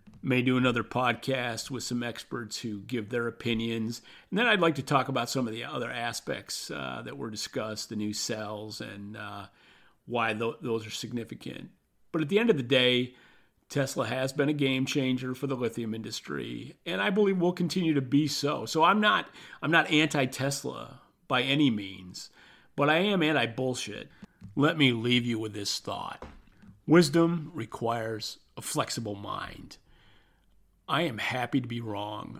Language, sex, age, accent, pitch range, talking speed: English, male, 40-59, American, 110-135 Hz, 170 wpm